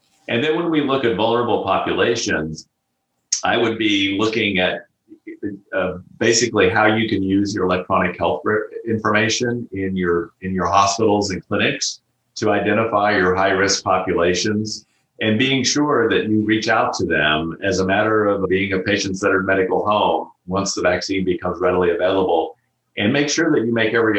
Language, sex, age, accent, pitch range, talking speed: English, male, 40-59, American, 90-110 Hz, 160 wpm